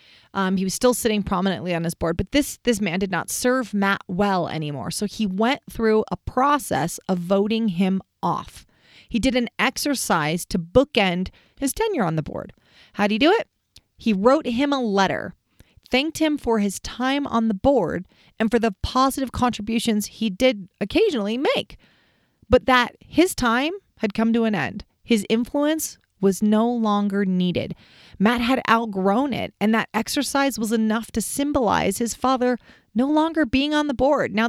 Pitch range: 200-260 Hz